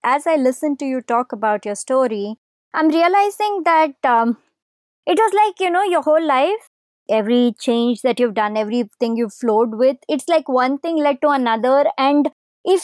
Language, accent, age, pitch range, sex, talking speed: English, Indian, 20-39, 245-330 Hz, male, 180 wpm